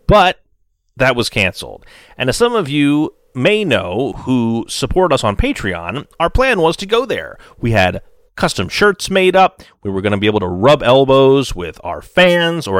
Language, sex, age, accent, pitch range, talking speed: English, male, 30-49, American, 110-175 Hz, 190 wpm